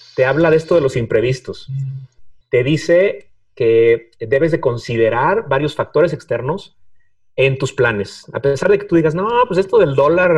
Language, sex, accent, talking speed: Spanish, male, Mexican, 175 wpm